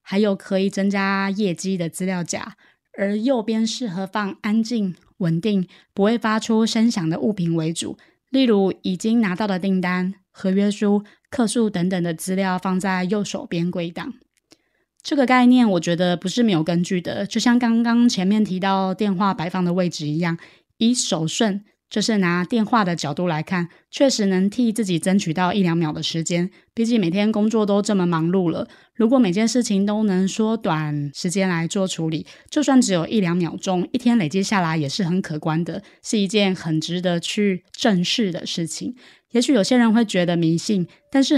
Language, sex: Chinese, female